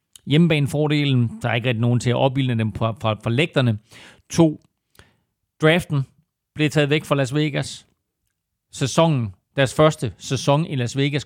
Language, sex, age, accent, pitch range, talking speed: Danish, male, 40-59, native, 120-150 Hz, 150 wpm